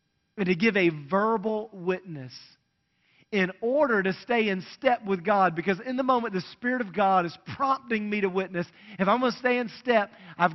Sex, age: male, 40-59